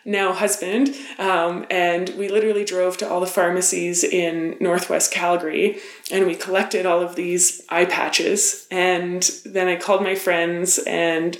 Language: English